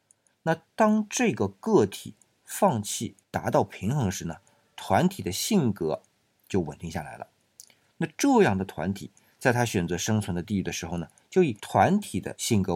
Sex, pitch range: male, 95-140 Hz